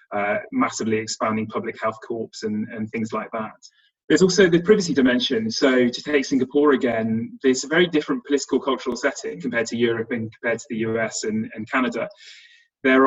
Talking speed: 185 wpm